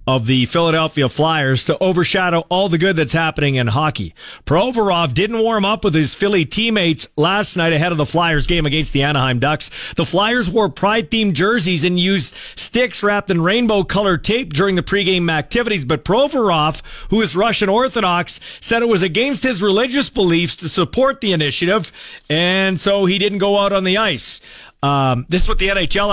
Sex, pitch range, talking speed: male, 145-205 Hz, 185 wpm